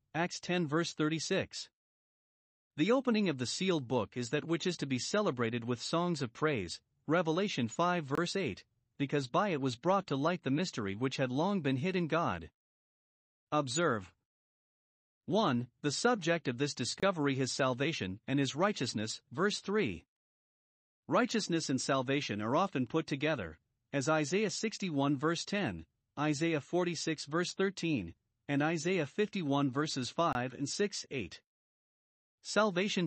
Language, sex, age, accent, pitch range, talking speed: English, male, 40-59, American, 125-175 Hz, 145 wpm